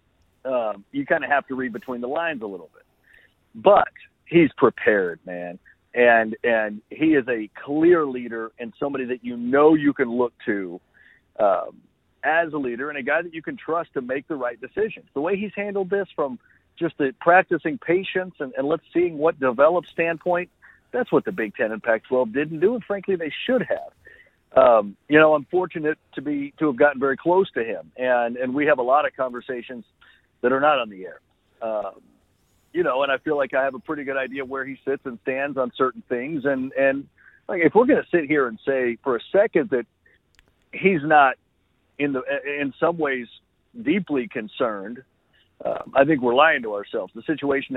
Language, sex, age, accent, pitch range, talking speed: English, male, 50-69, American, 125-160 Hz, 200 wpm